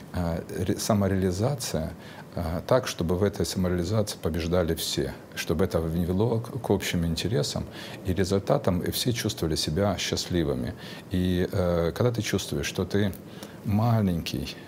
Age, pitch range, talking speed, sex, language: 50-69, 85-100 Hz, 115 wpm, male, Russian